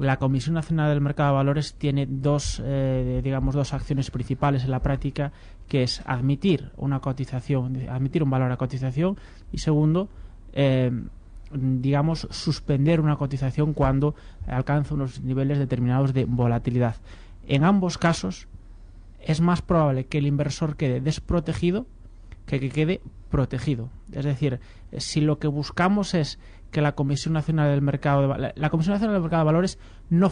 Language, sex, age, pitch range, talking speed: Spanish, male, 20-39, 130-155 Hz, 150 wpm